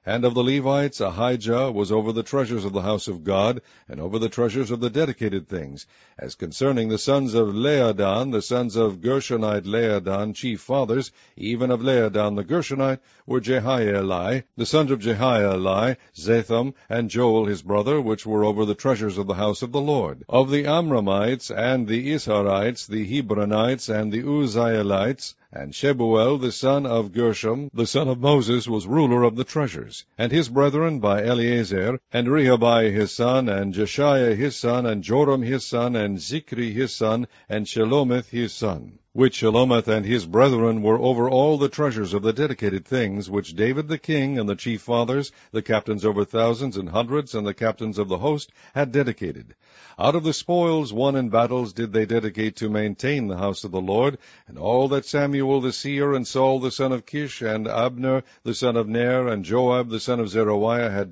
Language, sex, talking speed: English, male, 190 wpm